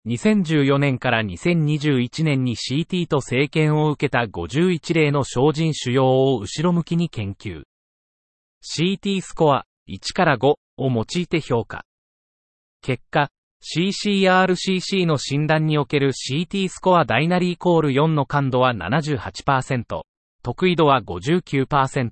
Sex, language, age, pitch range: male, Japanese, 40-59, 125-175 Hz